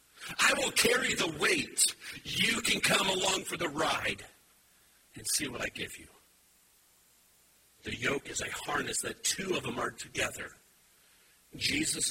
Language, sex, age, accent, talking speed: English, male, 50-69, American, 150 wpm